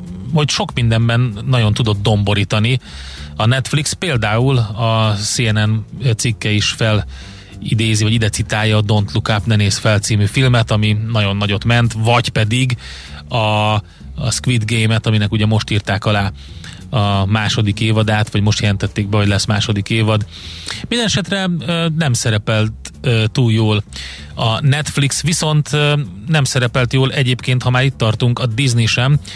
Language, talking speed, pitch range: Hungarian, 140 wpm, 105-125 Hz